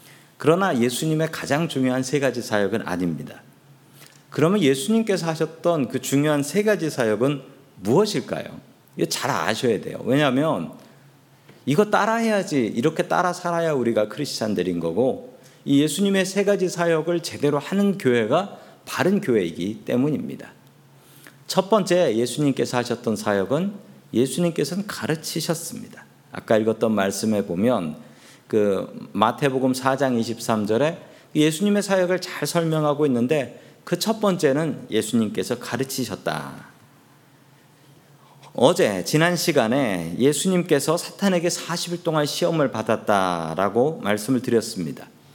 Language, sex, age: Korean, male, 40-59